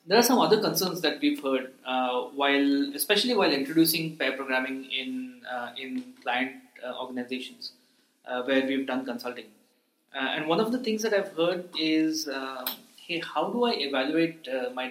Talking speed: 175 wpm